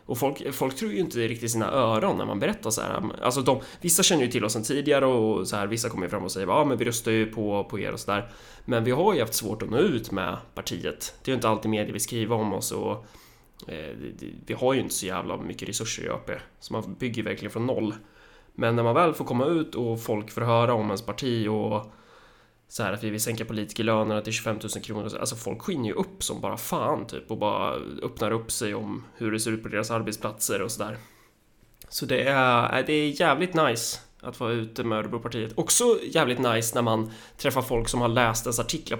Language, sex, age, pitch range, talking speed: Swedish, male, 20-39, 110-130 Hz, 240 wpm